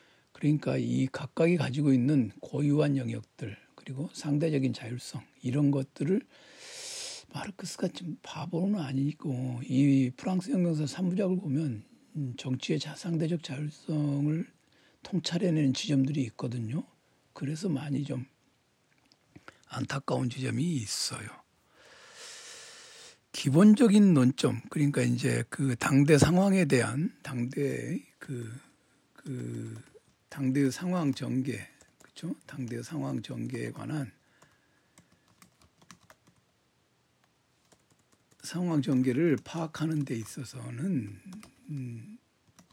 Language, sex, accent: Korean, male, native